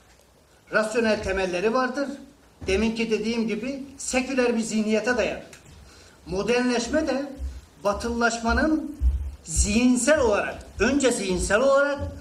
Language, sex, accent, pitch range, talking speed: Turkish, male, native, 185-255 Hz, 95 wpm